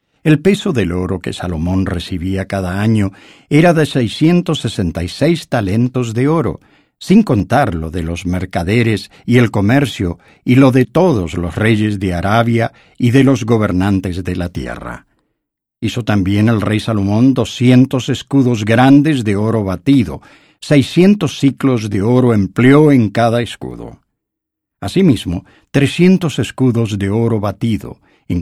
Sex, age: male, 50-69